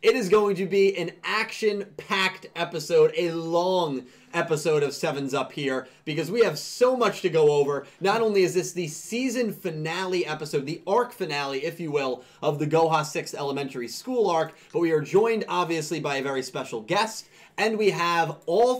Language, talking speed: English, 185 wpm